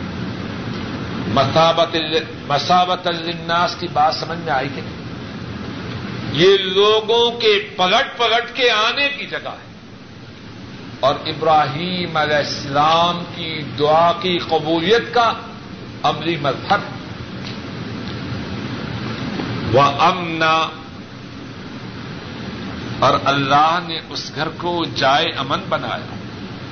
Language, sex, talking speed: Urdu, male, 90 wpm